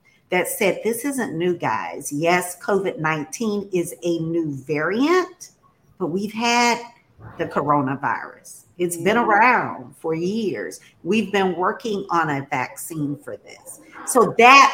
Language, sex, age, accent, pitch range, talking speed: English, female, 50-69, American, 150-205 Hz, 135 wpm